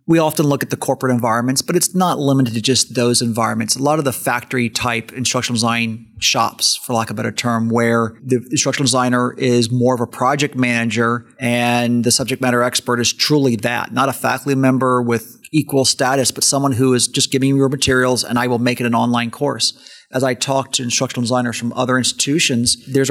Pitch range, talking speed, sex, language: 120-135 Hz, 215 wpm, male, English